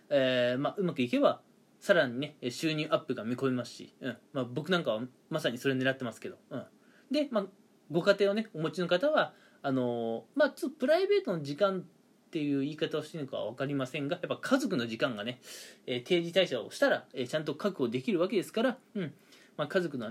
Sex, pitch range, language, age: male, 130-200 Hz, Japanese, 20-39